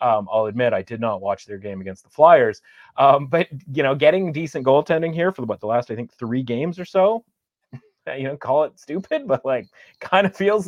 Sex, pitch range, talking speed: male, 110-140 Hz, 225 wpm